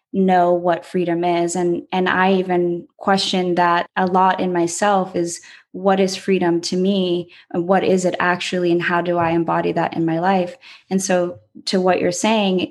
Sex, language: female, English